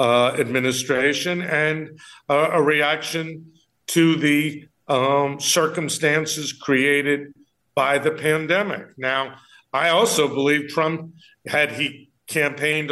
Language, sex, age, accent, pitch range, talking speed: English, male, 50-69, American, 130-160 Hz, 100 wpm